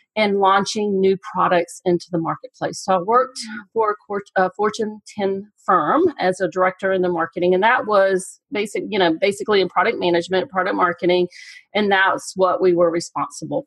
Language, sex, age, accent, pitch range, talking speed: English, female, 40-59, American, 180-235 Hz, 170 wpm